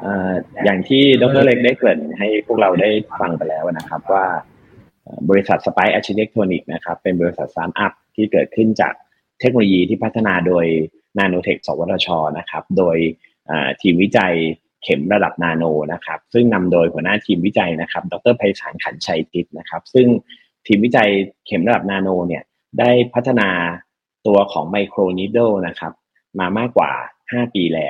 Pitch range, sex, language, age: 90-120 Hz, male, Thai, 30-49